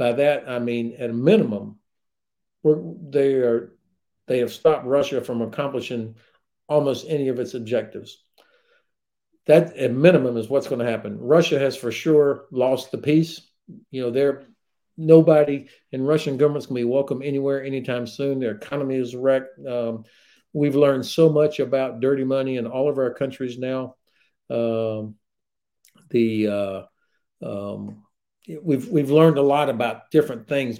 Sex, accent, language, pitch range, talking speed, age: male, American, Polish, 120-150 Hz, 155 wpm, 50-69